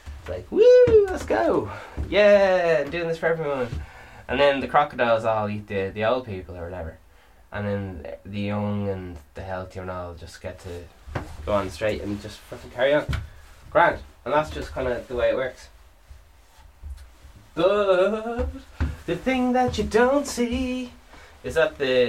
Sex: male